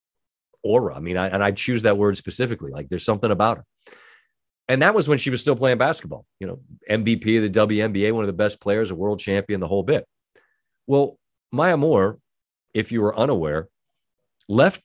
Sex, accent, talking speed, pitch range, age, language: male, American, 195 wpm, 110-145 Hz, 40-59, English